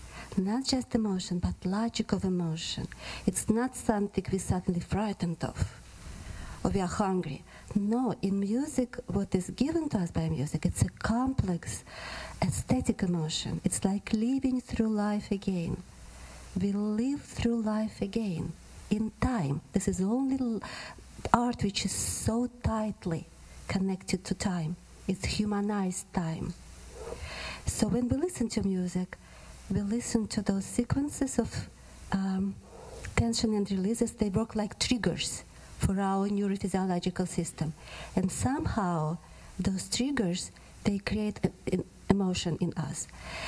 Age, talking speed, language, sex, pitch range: 40-59, 130 wpm, English, female, 180-220 Hz